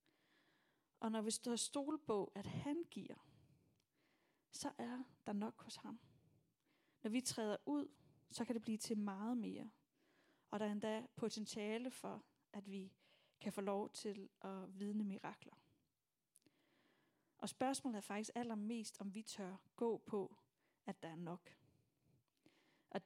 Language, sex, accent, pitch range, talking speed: Danish, female, native, 200-250 Hz, 145 wpm